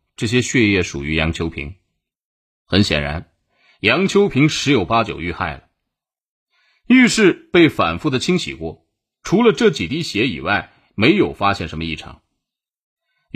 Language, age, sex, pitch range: Chinese, 30-49, male, 85-140 Hz